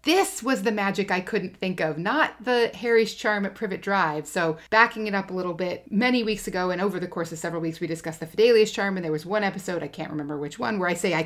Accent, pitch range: American, 170-230 Hz